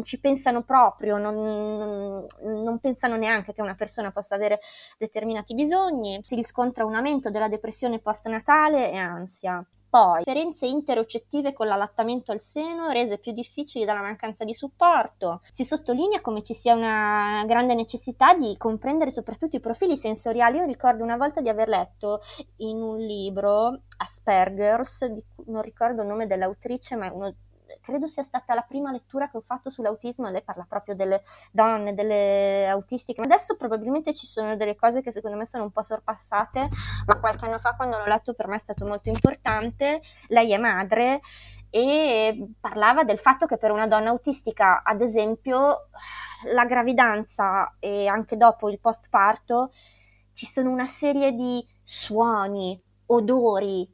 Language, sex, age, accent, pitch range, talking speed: Italian, female, 20-39, native, 210-255 Hz, 160 wpm